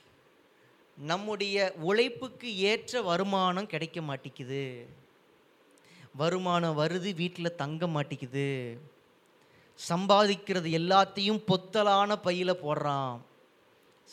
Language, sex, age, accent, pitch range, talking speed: Tamil, male, 20-39, native, 165-205 Hz, 70 wpm